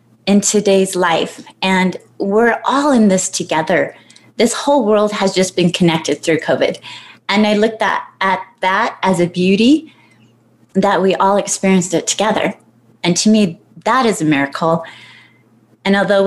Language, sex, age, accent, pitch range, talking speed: English, female, 30-49, American, 180-220 Hz, 155 wpm